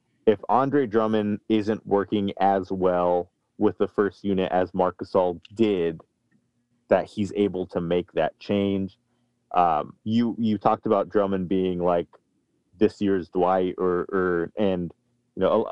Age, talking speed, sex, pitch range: 30-49, 150 wpm, male, 90-105 Hz